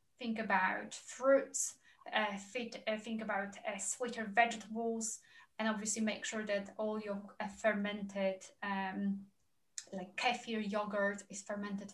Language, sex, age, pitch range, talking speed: English, female, 20-39, 205-240 Hz, 130 wpm